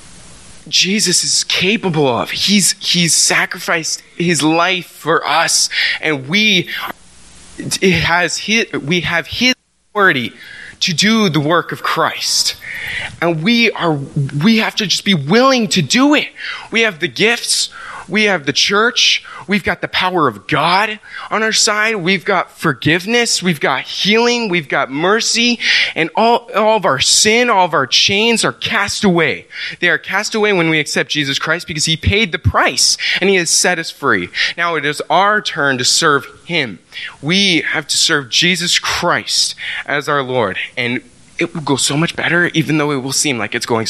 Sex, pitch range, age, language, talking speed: male, 150-205 Hz, 20-39, English, 175 wpm